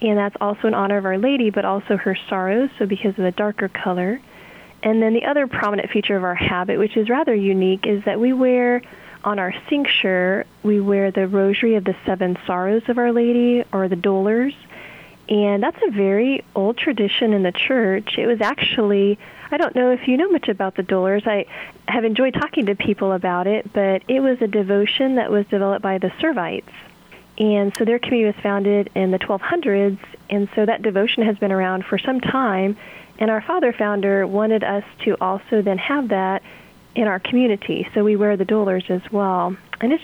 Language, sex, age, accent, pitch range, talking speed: English, female, 30-49, American, 195-230 Hz, 200 wpm